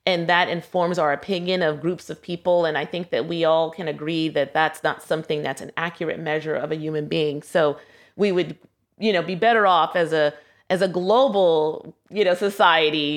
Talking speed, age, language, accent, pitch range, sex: 205 wpm, 30-49, English, American, 155-195 Hz, female